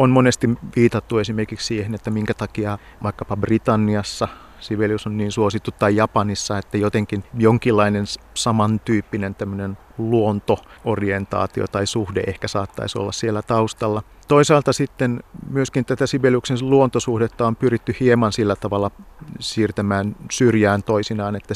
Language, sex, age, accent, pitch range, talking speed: Finnish, male, 50-69, native, 105-120 Hz, 125 wpm